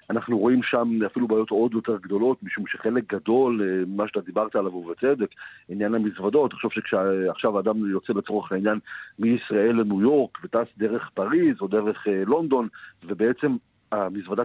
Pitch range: 105-130 Hz